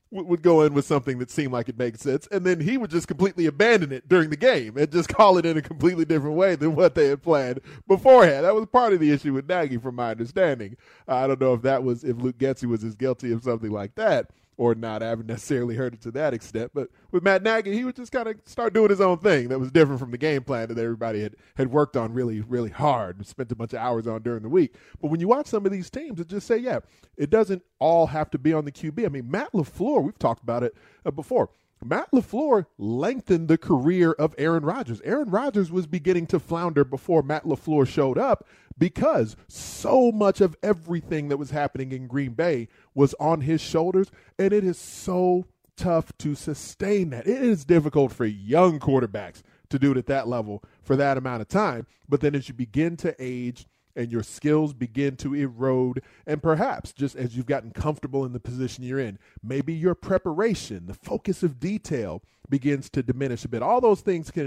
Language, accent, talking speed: English, American, 230 wpm